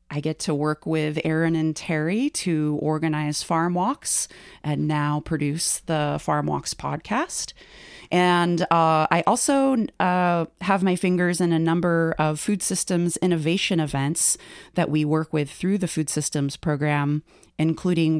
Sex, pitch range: female, 145-170 Hz